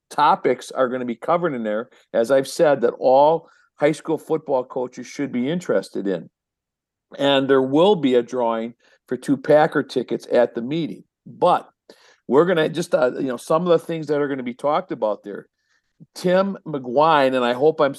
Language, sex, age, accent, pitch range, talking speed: English, male, 50-69, American, 125-155 Hz, 200 wpm